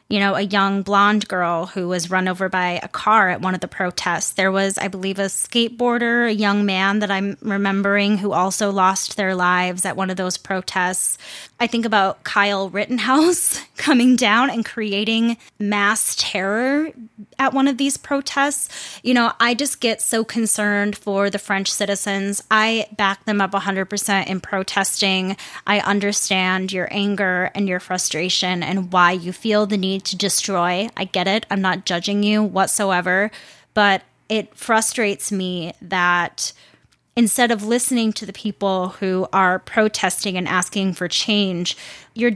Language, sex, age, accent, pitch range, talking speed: English, female, 20-39, American, 190-220 Hz, 165 wpm